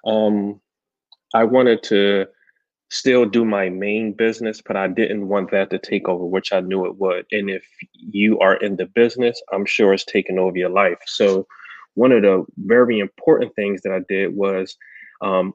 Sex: male